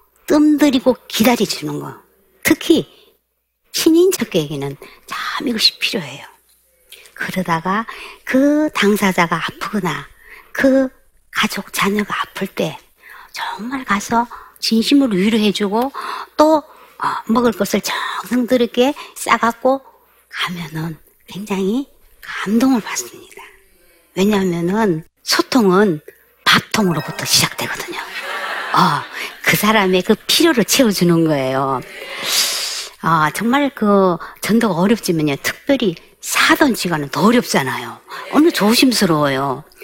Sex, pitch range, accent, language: male, 185-285 Hz, native, Korean